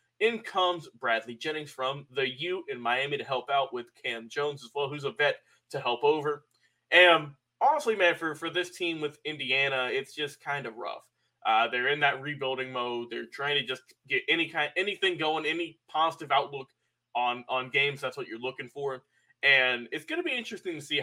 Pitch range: 130-165 Hz